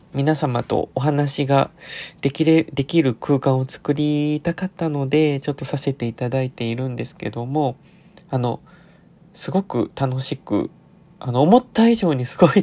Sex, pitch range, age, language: male, 130-170 Hz, 20-39, Japanese